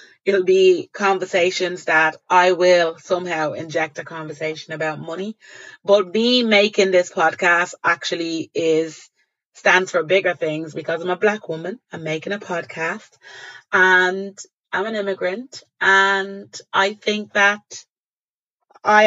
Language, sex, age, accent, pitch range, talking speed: English, female, 30-49, British, 170-200 Hz, 130 wpm